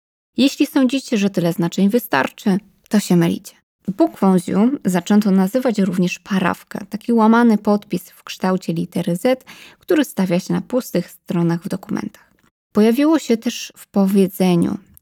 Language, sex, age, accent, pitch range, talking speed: Polish, female, 20-39, native, 175-220 Hz, 140 wpm